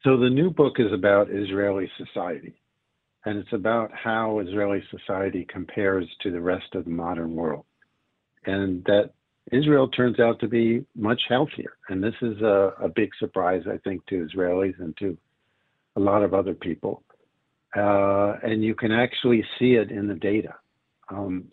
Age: 60-79